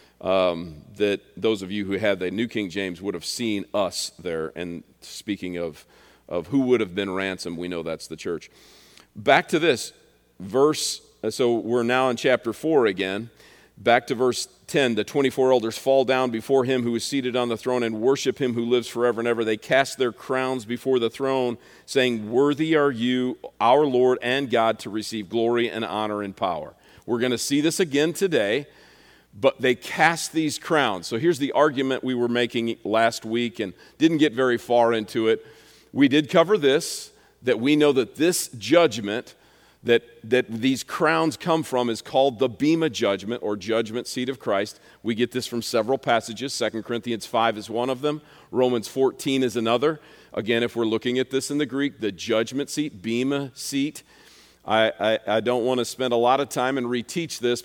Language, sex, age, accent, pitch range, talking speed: English, male, 40-59, American, 110-135 Hz, 195 wpm